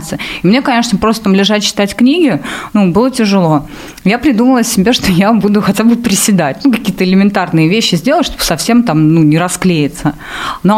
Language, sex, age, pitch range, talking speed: Russian, female, 30-49, 165-215 Hz, 180 wpm